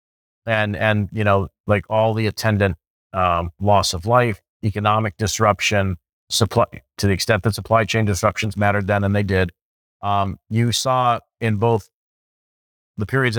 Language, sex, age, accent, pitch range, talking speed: English, male, 40-59, American, 95-110 Hz, 150 wpm